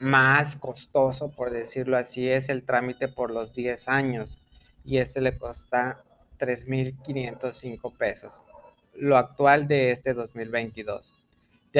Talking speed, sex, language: 120 wpm, male, Spanish